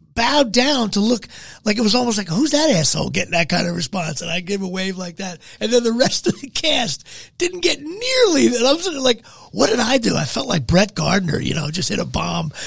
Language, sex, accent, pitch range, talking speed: English, male, American, 150-210 Hz, 240 wpm